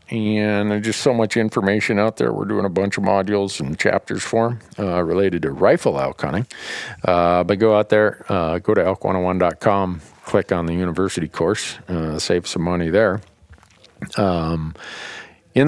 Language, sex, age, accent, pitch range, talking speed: English, male, 50-69, American, 100-130 Hz, 170 wpm